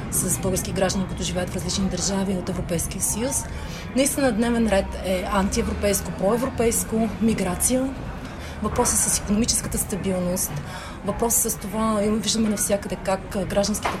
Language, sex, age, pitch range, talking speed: Bulgarian, female, 30-49, 185-220 Hz, 125 wpm